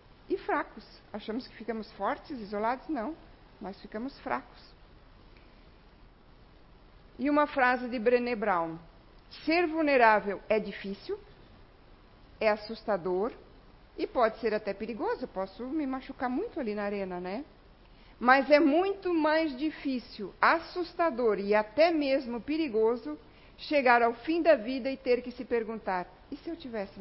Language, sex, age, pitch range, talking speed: Portuguese, female, 50-69, 220-290 Hz, 135 wpm